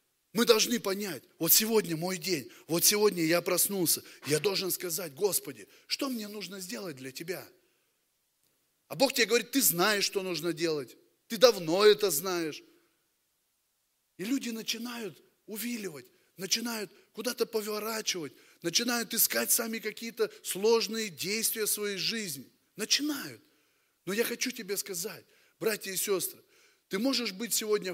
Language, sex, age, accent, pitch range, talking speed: Russian, male, 20-39, native, 165-225 Hz, 135 wpm